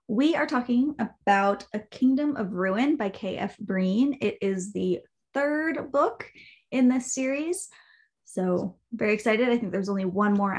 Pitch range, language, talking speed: 200-260 Hz, English, 160 wpm